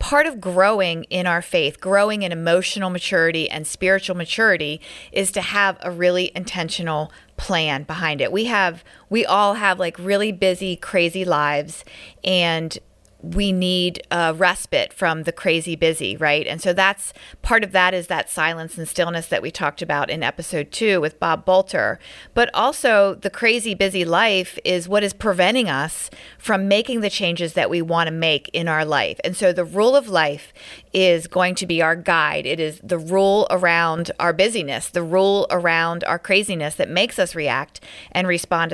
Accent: American